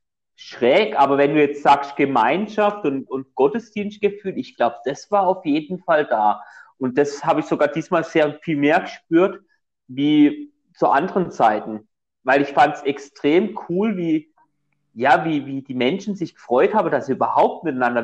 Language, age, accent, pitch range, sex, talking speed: German, 30-49, German, 130-175 Hz, male, 170 wpm